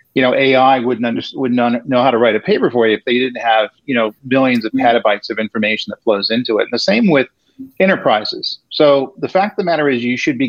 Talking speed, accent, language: 260 wpm, American, English